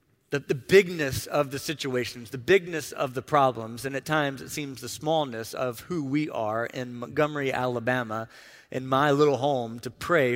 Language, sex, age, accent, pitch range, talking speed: English, male, 40-59, American, 130-165 Hz, 180 wpm